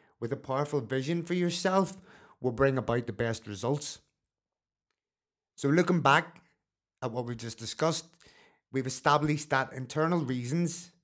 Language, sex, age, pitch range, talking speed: English, male, 30-49, 125-150 Hz, 135 wpm